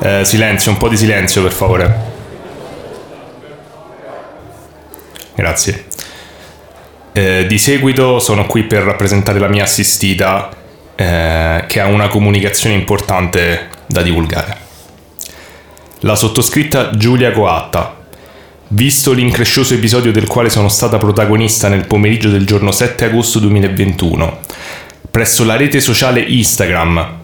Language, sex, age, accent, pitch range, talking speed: Italian, male, 20-39, native, 95-115 Hz, 110 wpm